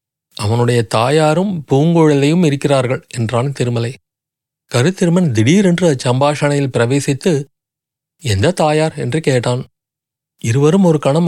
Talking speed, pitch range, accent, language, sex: 90 wpm, 125-155 Hz, native, Tamil, male